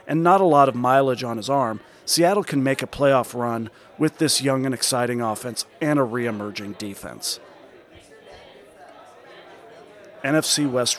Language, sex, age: English, male, 40-59